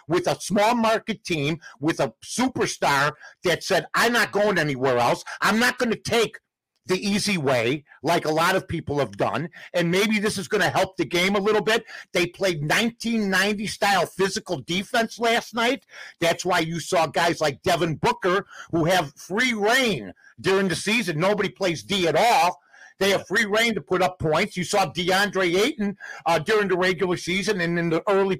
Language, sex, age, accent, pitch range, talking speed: English, male, 50-69, American, 165-215 Hz, 190 wpm